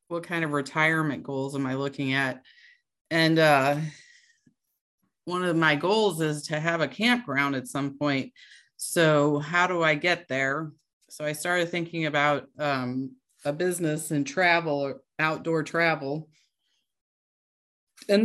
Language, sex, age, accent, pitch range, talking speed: English, female, 30-49, American, 140-170 Hz, 140 wpm